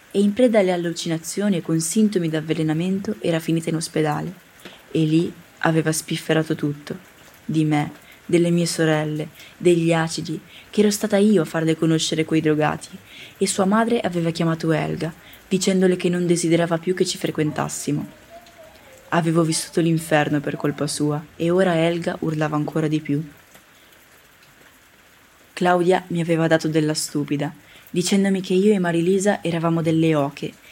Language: Italian